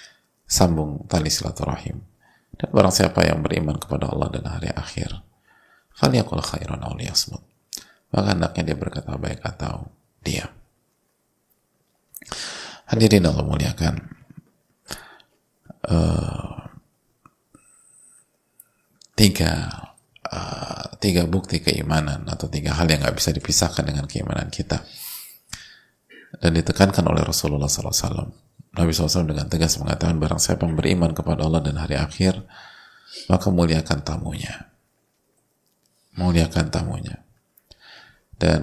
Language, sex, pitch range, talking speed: Indonesian, male, 80-90 Hz, 100 wpm